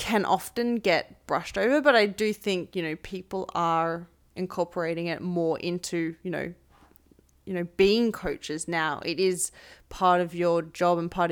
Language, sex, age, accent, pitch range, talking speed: English, female, 20-39, Australian, 165-190 Hz, 170 wpm